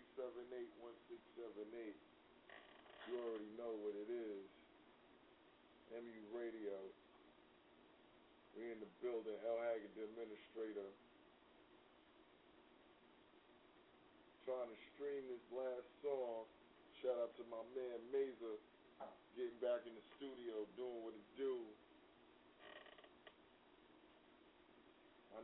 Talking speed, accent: 105 wpm, American